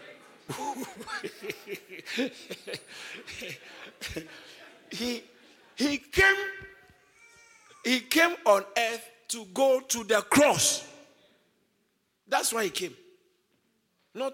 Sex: male